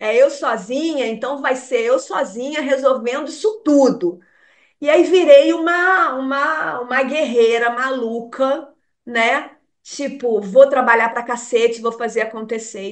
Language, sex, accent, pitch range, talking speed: Portuguese, female, Brazilian, 225-285 Hz, 130 wpm